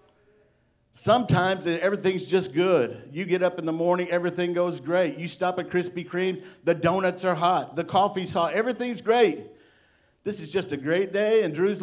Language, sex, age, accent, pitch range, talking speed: English, male, 50-69, American, 150-180 Hz, 180 wpm